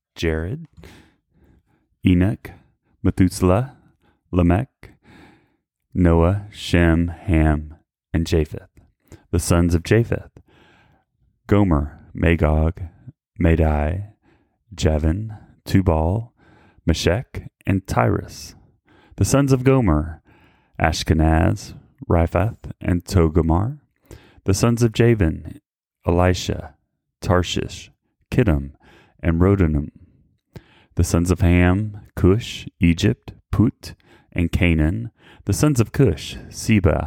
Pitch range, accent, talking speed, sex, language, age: 80-105 Hz, American, 85 wpm, male, English, 30-49